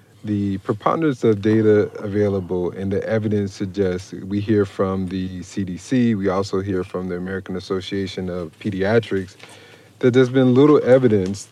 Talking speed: 145 wpm